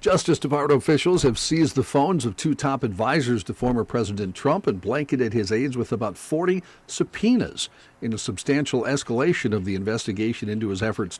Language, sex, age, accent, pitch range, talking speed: English, male, 50-69, American, 110-150 Hz, 175 wpm